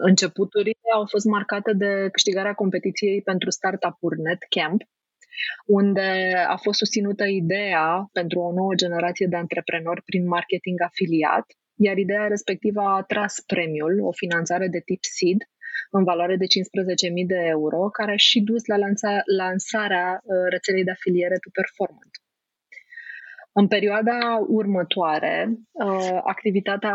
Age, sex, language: 20-39, female, Romanian